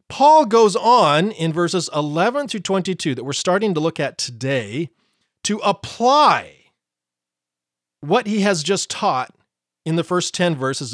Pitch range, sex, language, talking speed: 150-205 Hz, male, English, 150 wpm